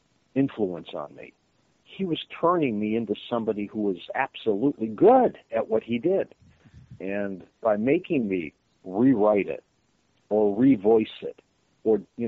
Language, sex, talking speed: English, male, 135 wpm